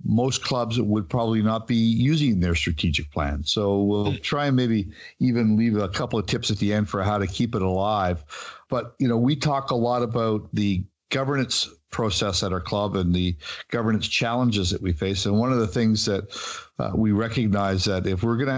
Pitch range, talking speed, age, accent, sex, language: 95-120 Hz, 210 wpm, 50-69, American, male, English